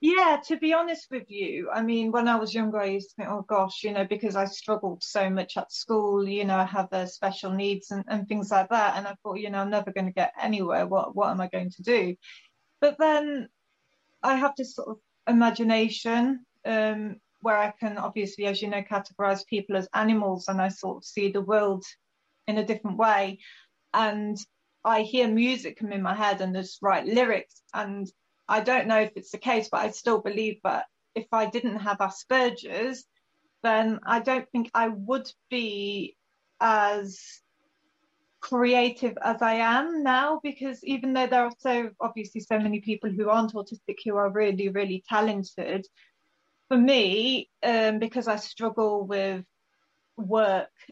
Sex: female